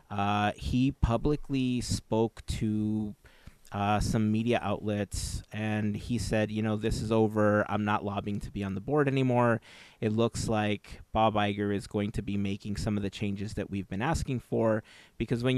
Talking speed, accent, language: 180 wpm, American, English